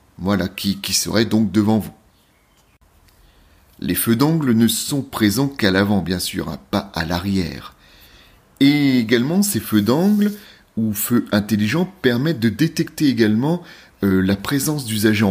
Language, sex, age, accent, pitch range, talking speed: French, male, 30-49, French, 100-150 Hz, 145 wpm